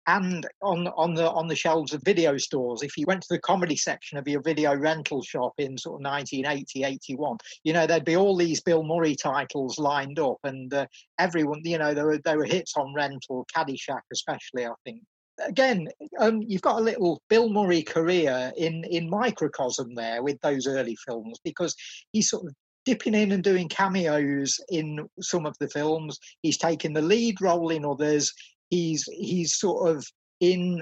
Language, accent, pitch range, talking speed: English, British, 140-175 Hz, 190 wpm